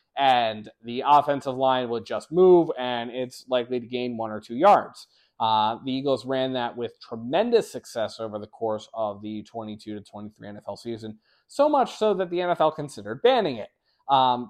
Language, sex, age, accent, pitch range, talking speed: English, male, 20-39, American, 110-160 Hz, 180 wpm